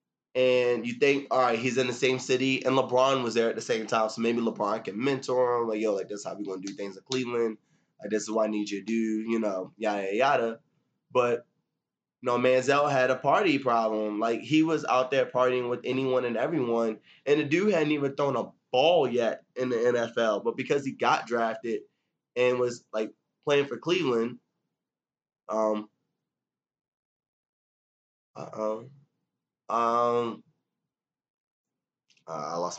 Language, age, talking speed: English, 20-39, 185 wpm